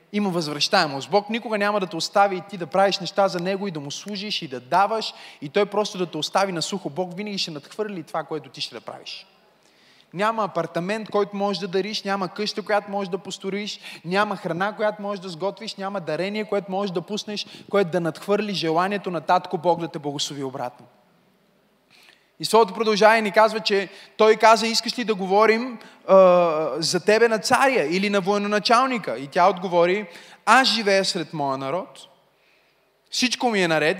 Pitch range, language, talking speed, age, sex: 165-210 Hz, Bulgarian, 190 wpm, 20-39, male